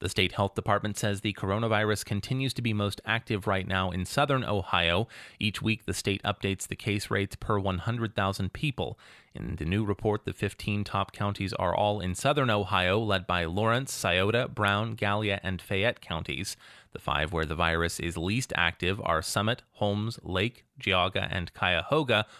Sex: male